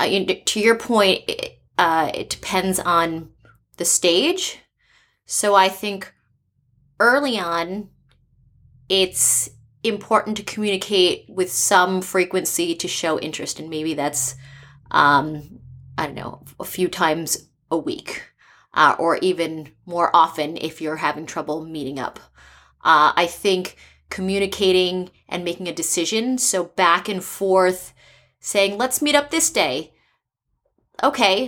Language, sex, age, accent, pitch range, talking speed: English, female, 20-39, American, 165-220 Hz, 125 wpm